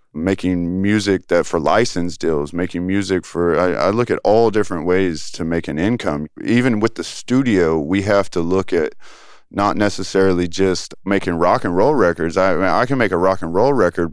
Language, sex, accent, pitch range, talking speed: English, male, American, 85-105 Hz, 195 wpm